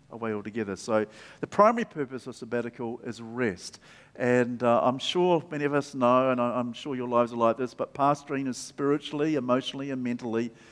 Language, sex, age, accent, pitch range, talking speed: English, male, 50-69, Australian, 125-155 Hz, 185 wpm